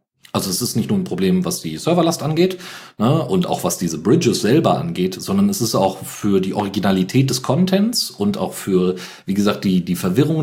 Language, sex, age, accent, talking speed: German, male, 40-59, German, 205 wpm